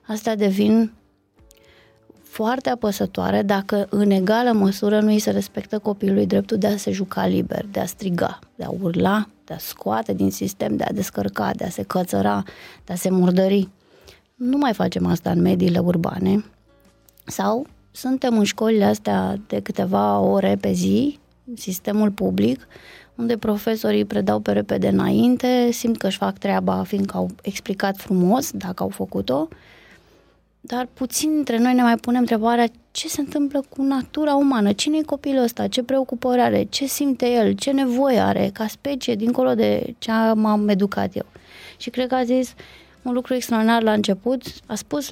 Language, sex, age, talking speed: Romanian, female, 20-39, 170 wpm